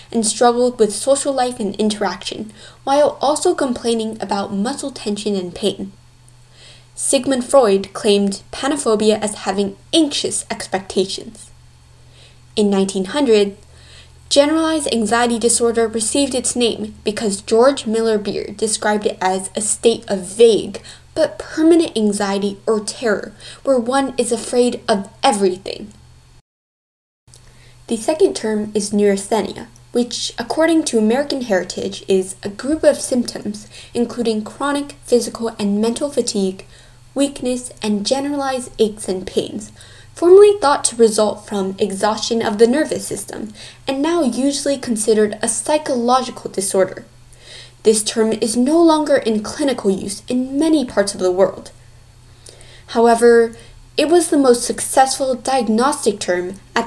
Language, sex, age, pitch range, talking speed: English, female, 10-29, 195-260 Hz, 125 wpm